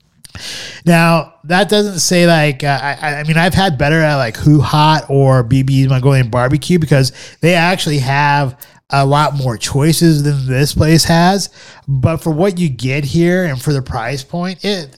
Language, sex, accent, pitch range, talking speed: English, male, American, 130-155 Hz, 175 wpm